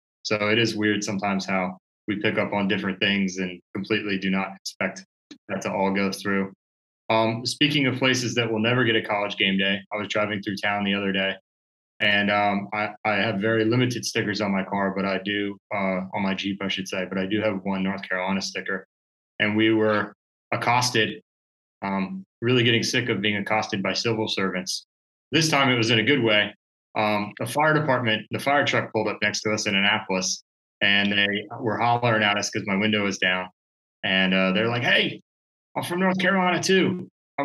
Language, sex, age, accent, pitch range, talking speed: English, male, 20-39, American, 95-115 Hz, 205 wpm